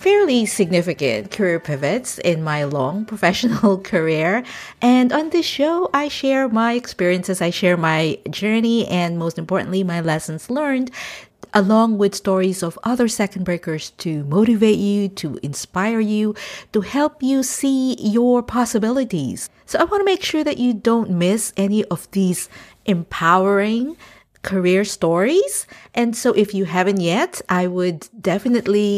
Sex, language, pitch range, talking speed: female, English, 180-235 Hz, 145 wpm